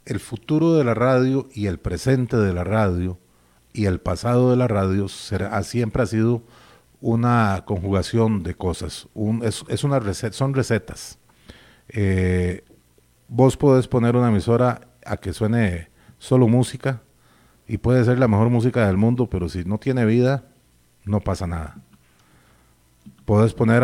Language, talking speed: Spanish, 155 wpm